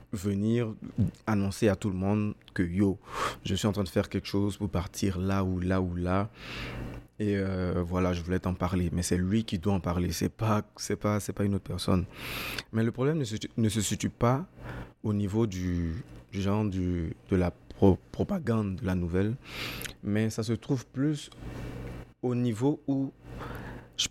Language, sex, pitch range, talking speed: French, male, 90-115 Hz, 195 wpm